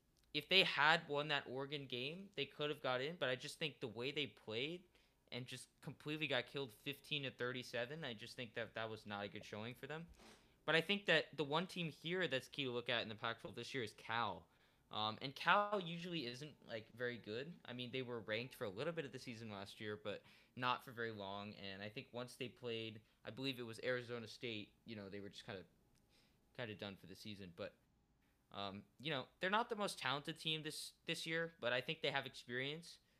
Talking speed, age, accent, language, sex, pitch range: 235 wpm, 10-29, American, English, male, 110-145 Hz